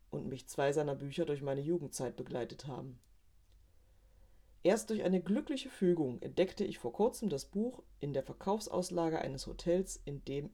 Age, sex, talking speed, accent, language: 40-59, female, 160 wpm, German, German